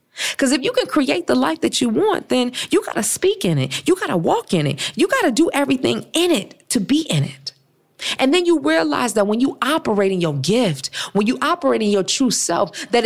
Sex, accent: female, American